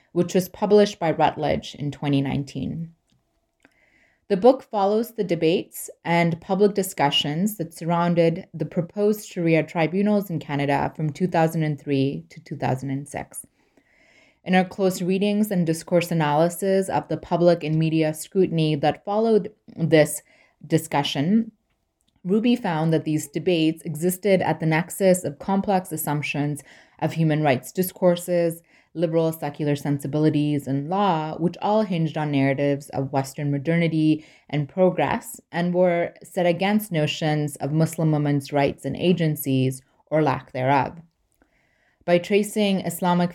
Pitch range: 150-185 Hz